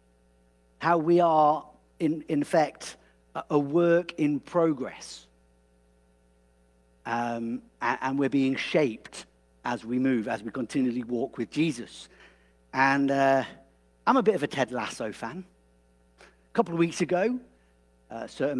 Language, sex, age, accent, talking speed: English, male, 50-69, British, 130 wpm